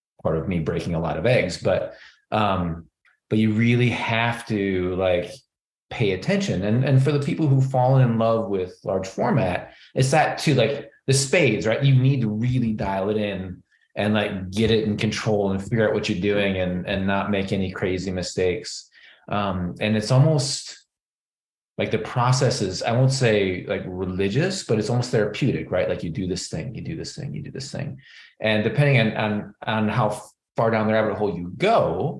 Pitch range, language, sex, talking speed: 105-135 Hz, English, male, 200 wpm